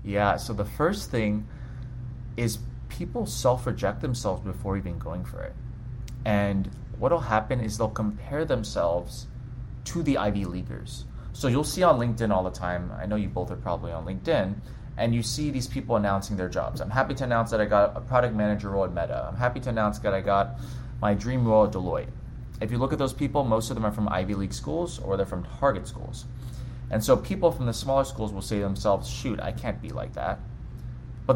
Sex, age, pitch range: male, 30-49, 105-125 Hz